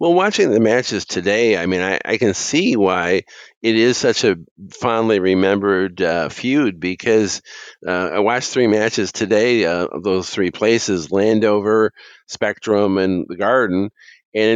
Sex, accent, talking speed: male, American, 155 wpm